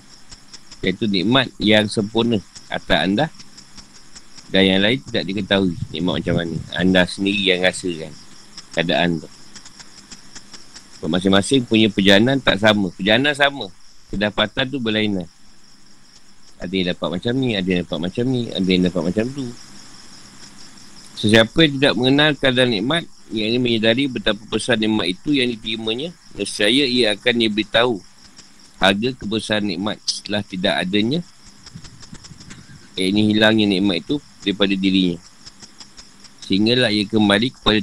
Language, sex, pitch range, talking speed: Malay, male, 95-120 Hz, 130 wpm